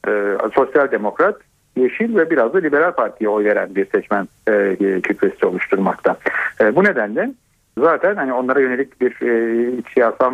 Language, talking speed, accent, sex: Turkish, 150 wpm, native, male